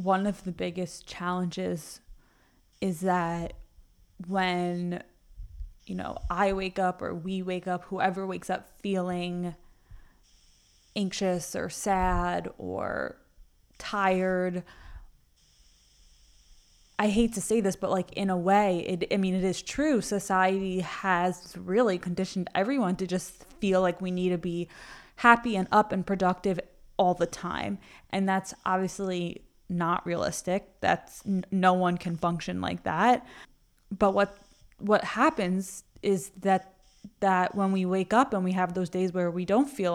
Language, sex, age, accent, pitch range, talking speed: English, female, 20-39, American, 175-195 Hz, 145 wpm